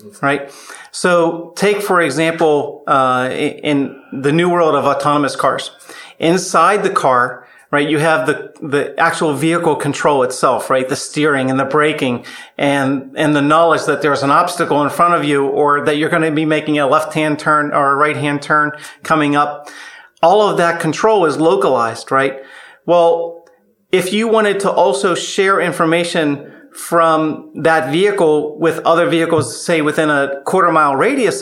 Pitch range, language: 140-170 Hz, English